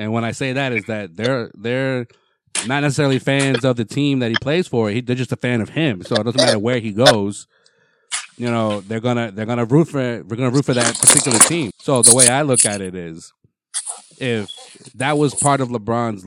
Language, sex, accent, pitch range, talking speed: English, male, American, 110-145 Hz, 230 wpm